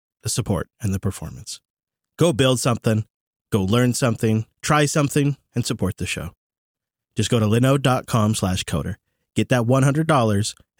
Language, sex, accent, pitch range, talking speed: English, male, American, 110-135 Hz, 145 wpm